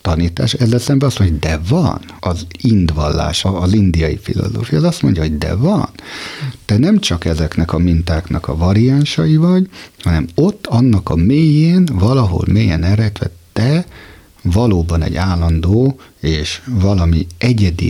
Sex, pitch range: male, 85-120 Hz